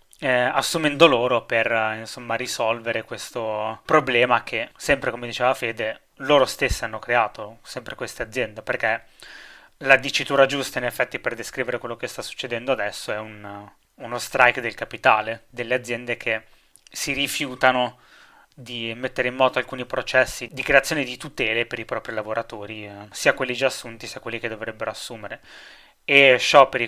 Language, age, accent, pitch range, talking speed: Italian, 20-39, native, 115-130 Hz, 155 wpm